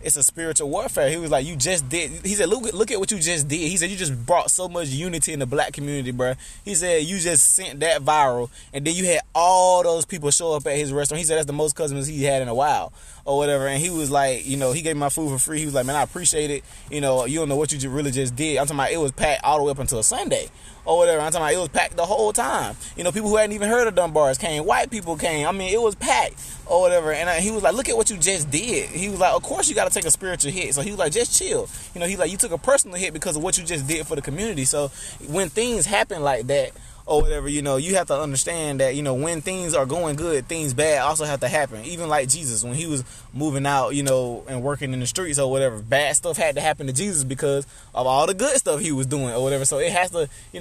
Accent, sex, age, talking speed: American, male, 20-39, 300 wpm